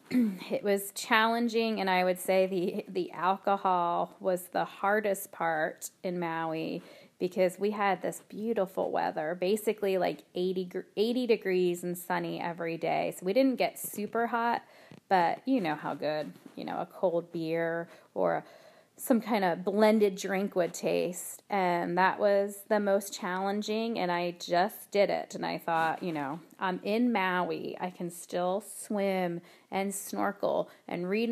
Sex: female